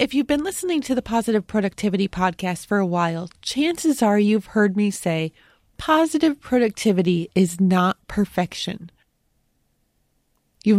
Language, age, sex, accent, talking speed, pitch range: English, 20-39, female, American, 135 wpm, 185-230 Hz